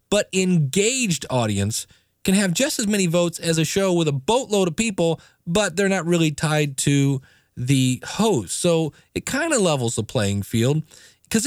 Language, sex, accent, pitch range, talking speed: English, male, American, 140-195 Hz, 180 wpm